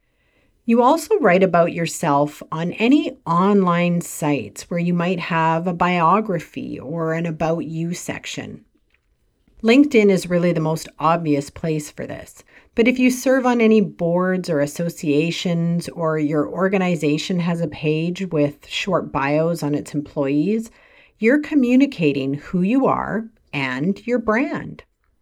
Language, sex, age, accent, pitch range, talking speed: English, female, 50-69, American, 160-225 Hz, 140 wpm